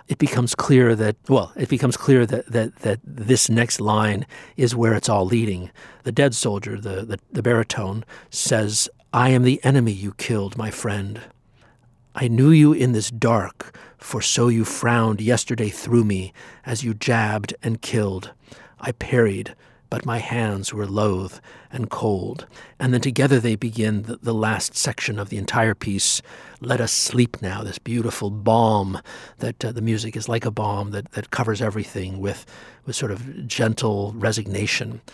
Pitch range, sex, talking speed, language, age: 105-125 Hz, male, 170 wpm, English, 50-69